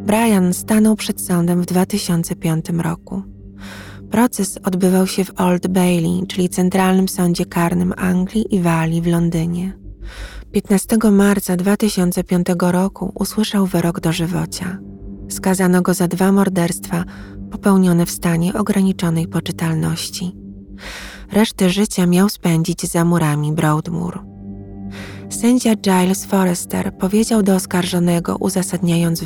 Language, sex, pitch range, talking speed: Polish, female, 165-190 Hz, 110 wpm